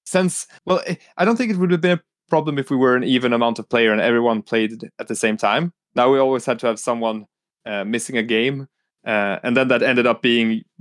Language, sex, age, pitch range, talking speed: English, male, 20-39, 115-165 Hz, 245 wpm